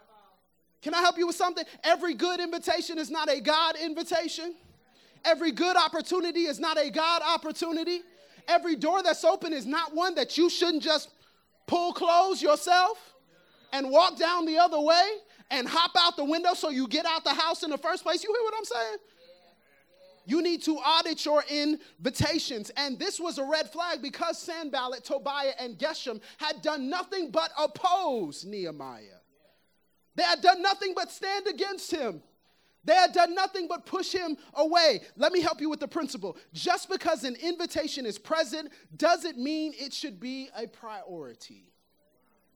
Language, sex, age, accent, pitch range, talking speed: English, male, 30-49, American, 280-345 Hz, 170 wpm